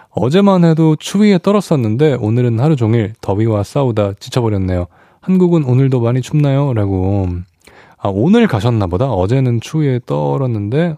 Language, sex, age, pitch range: Korean, male, 20-39, 105-155 Hz